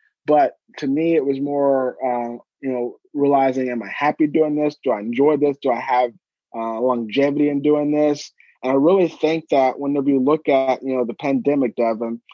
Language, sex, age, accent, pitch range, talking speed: English, male, 30-49, American, 130-150 Hz, 200 wpm